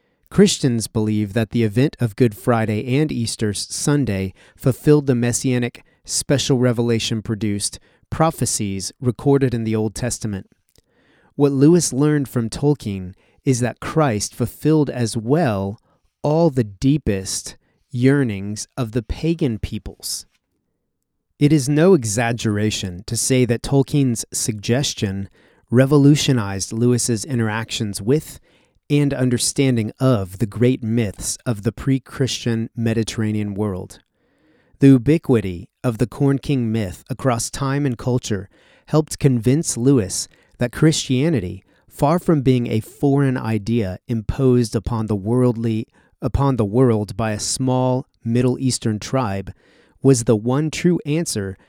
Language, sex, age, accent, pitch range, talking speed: English, male, 30-49, American, 110-135 Hz, 125 wpm